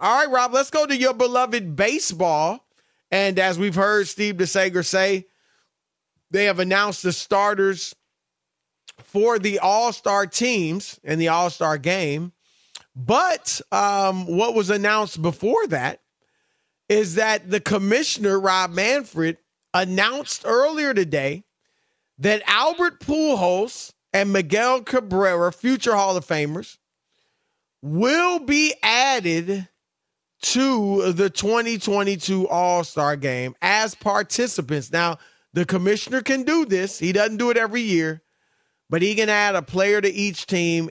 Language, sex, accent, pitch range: English, male, American, 175-225 Hz